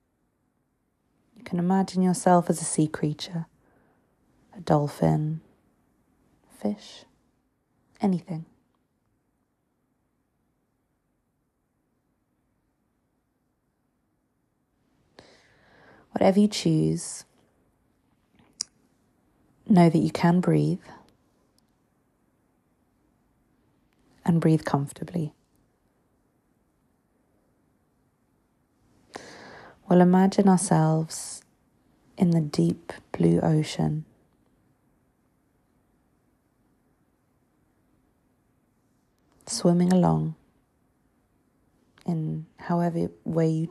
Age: 30-49